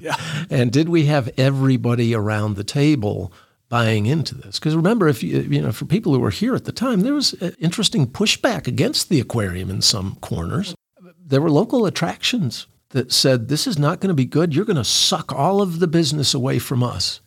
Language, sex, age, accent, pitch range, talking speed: English, male, 50-69, American, 105-140 Hz, 210 wpm